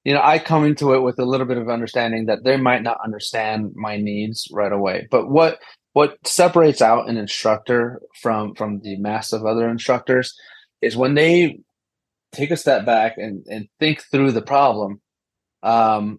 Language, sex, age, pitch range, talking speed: English, male, 30-49, 110-130 Hz, 180 wpm